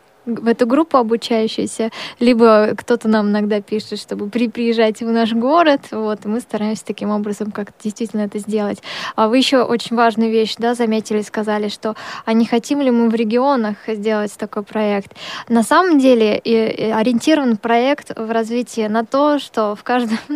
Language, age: Russian, 10-29